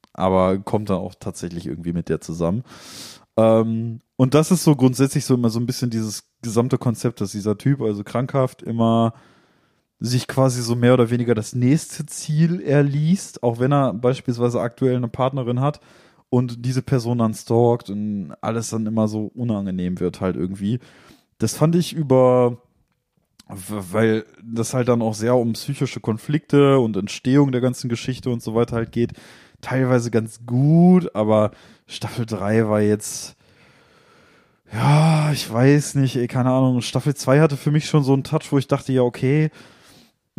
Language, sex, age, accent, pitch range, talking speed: German, male, 20-39, German, 115-140 Hz, 165 wpm